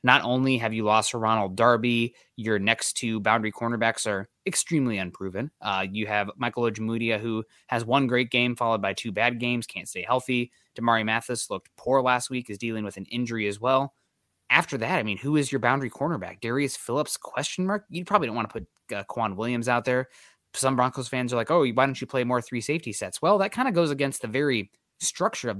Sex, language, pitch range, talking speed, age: male, English, 110-130 Hz, 225 wpm, 20-39